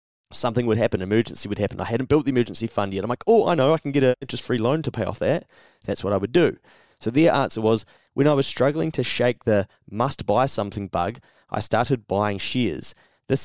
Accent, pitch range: Australian, 100-120 Hz